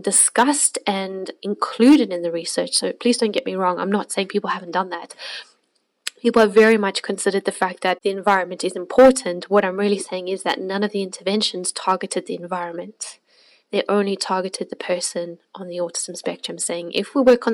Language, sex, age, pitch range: English, female, 10-29, 190-230 Hz